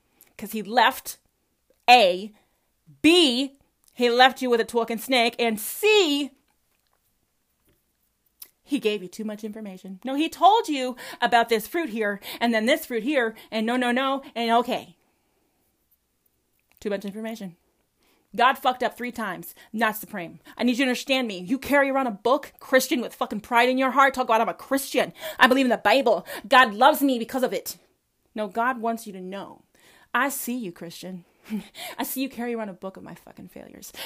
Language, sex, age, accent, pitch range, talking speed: English, female, 30-49, American, 205-265 Hz, 185 wpm